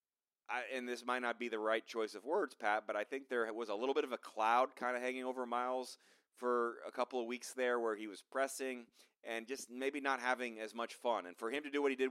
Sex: male